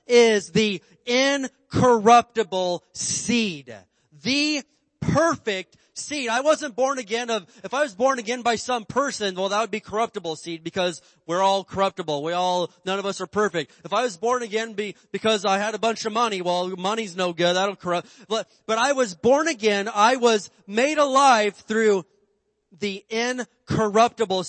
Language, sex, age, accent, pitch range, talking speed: English, male, 30-49, American, 170-220 Hz, 170 wpm